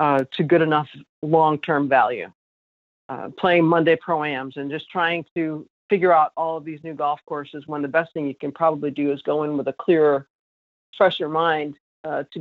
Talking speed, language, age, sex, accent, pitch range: 195 wpm, English, 50-69, female, American, 155-200 Hz